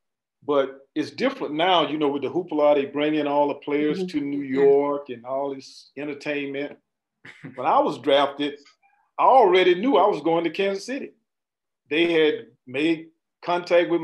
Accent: American